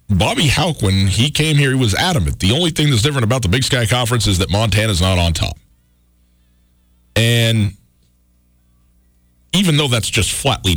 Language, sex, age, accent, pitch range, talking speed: English, male, 40-59, American, 95-140 Hz, 175 wpm